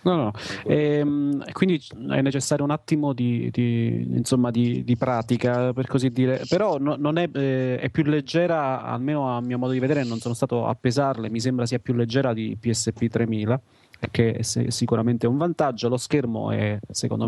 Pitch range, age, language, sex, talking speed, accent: 115-135 Hz, 30-49, Italian, male, 190 wpm, native